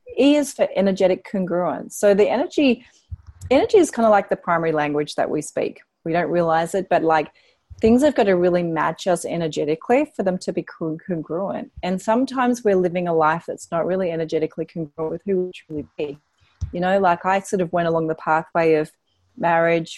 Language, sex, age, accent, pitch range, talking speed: English, female, 30-49, Australian, 155-195 Hz, 200 wpm